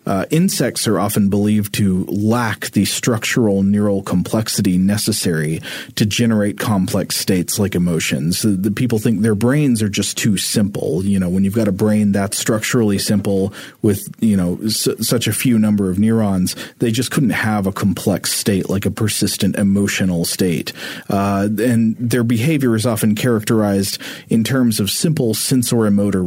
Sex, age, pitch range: male, 40-59, 95-115 Hz